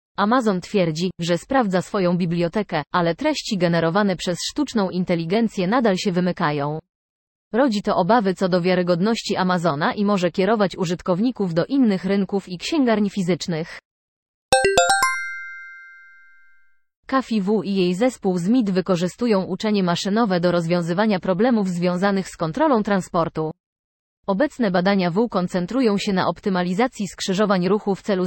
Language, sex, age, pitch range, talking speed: Polish, female, 20-39, 175-215 Hz, 125 wpm